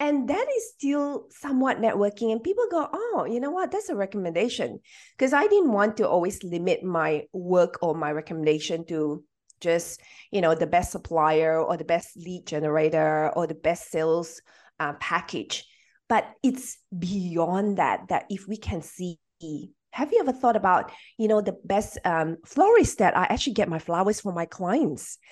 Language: English